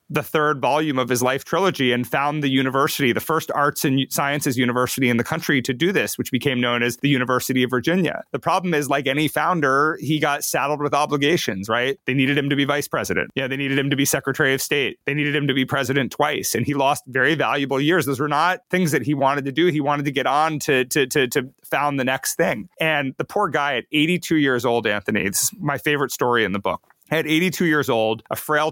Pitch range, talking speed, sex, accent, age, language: 125-150 Hz, 240 wpm, male, American, 30-49, English